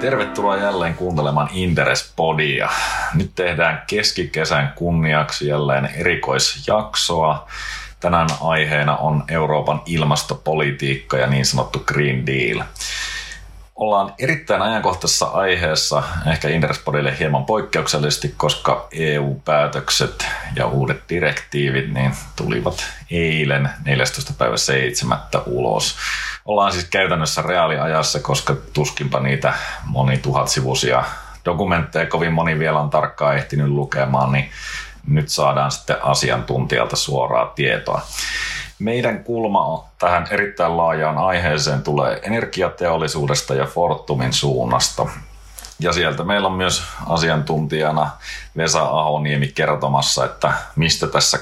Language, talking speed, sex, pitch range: Finnish, 100 wpm, male, 70-85 Hz